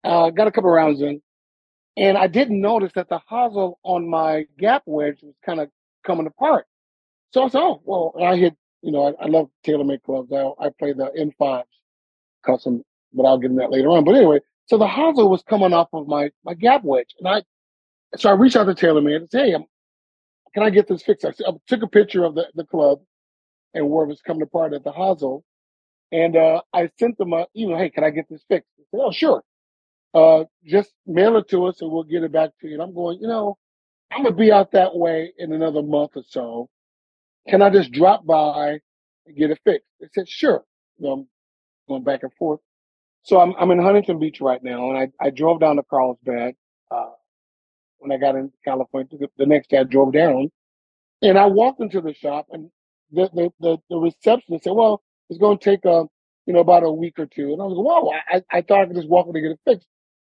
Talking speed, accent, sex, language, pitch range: 235 wpm, American, male, English, 140-190 Hz